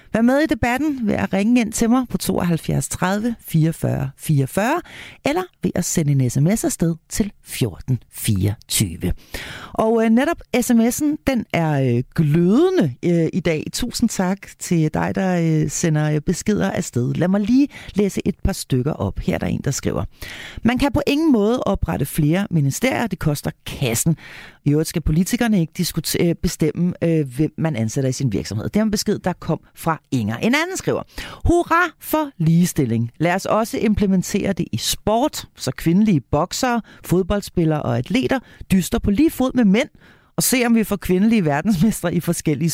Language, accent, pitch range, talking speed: Danish, native, 155-225 Hz, 175 wpm